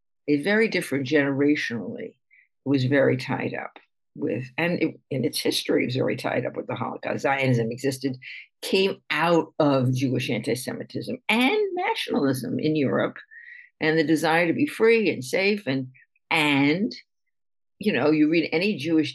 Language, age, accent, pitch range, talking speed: English, 60-79, American, 130-160 Hz, 155 wpm